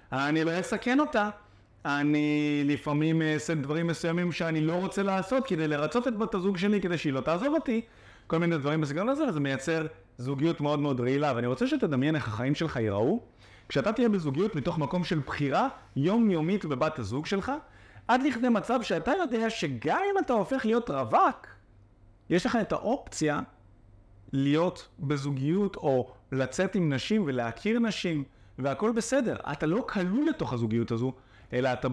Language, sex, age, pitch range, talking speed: Hebrew, male, 30-49, 135-200 Hz, 160 wpm